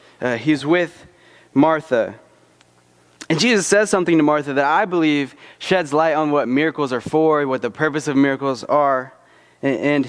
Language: English